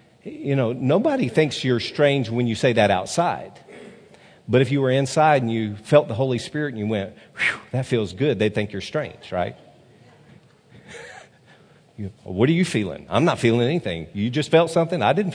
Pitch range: 115-150 Hz